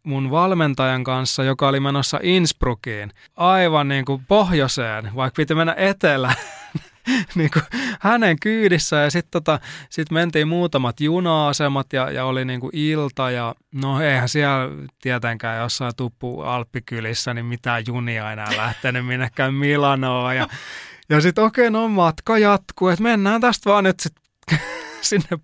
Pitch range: 125-170 Hz